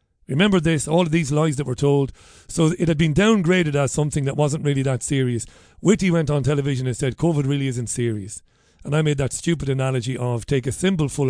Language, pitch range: English, 125-160 Hz